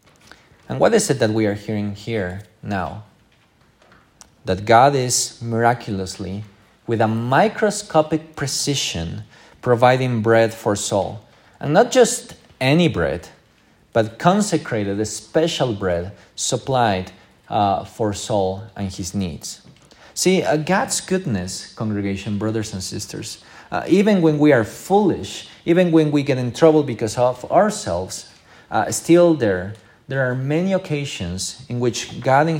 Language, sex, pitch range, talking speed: English, male, 100-140 Hz, 135 wpm